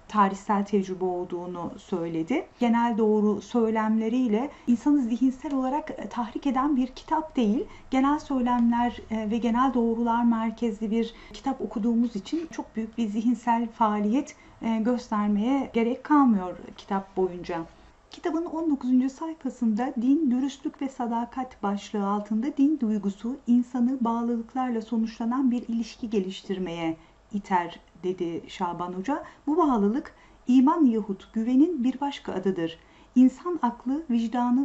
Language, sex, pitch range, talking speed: Turkish, female, 205-260 Hz, 115 wpm